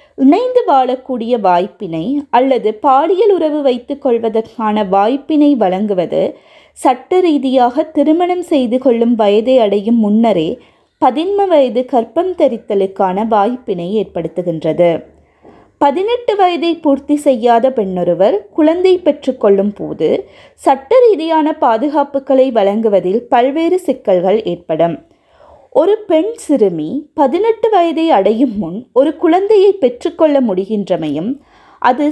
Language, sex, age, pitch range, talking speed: Tamil, female, 20-39, 215-325 Hz, 95 wpm